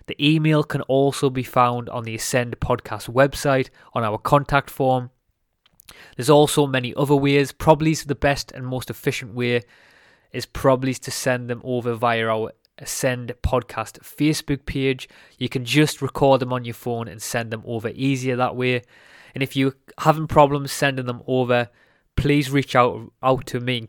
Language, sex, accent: English, male, British